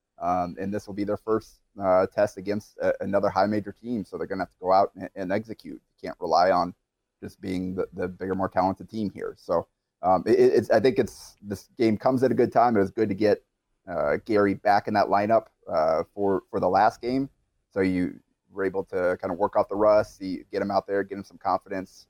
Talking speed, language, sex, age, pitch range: 240 wpm, English, male, 30-49, 95-110 Hz